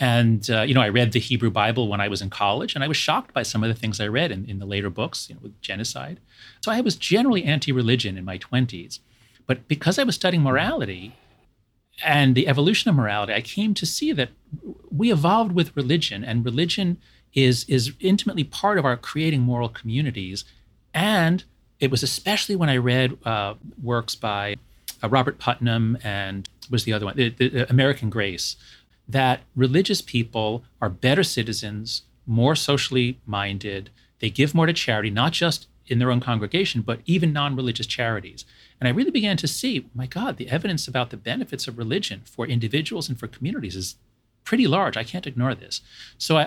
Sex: male